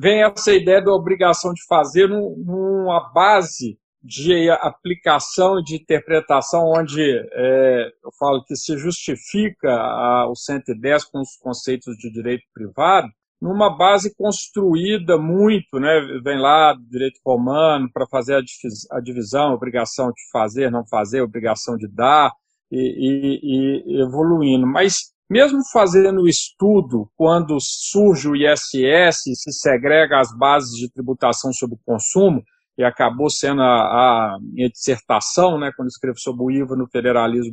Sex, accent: male, Brazilian